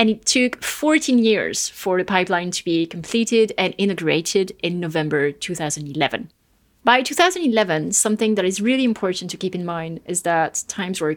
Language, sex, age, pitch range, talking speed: English, female, 30-49, 175-230 Hz, 165 wpm